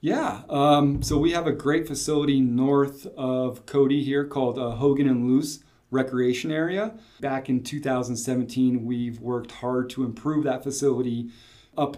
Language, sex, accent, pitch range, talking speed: English, male, American, 120-140 Hz, 150 wpm